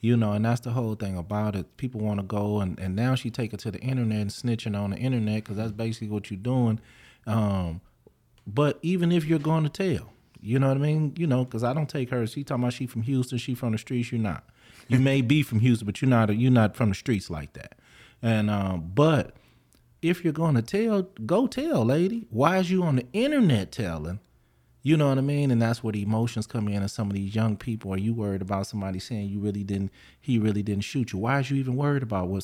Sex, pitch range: male, 105-130 Hz